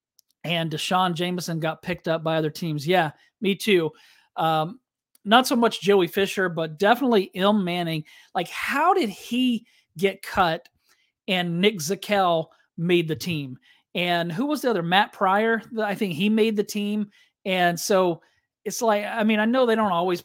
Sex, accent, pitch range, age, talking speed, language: male, American, 160-205 Hz, 40-59, 170 wpm, English